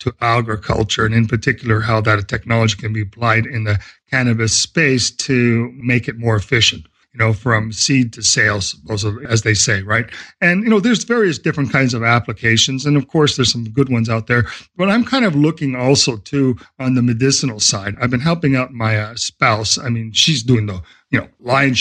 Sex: male